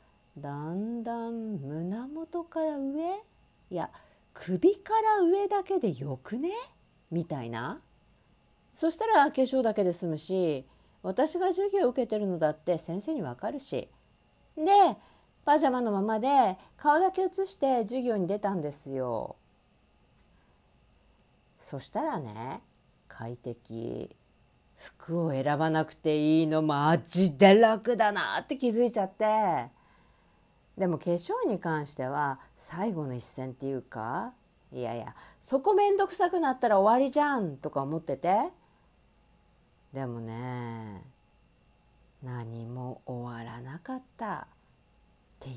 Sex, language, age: female, Japanese, 50-69